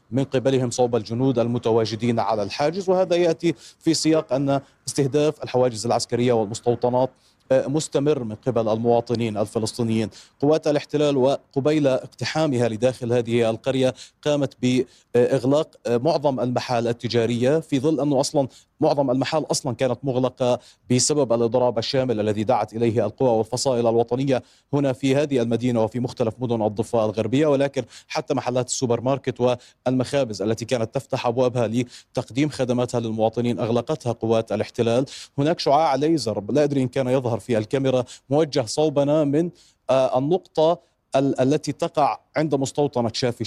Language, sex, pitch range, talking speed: Arabic, male, 120-145 Hz, 130 wpm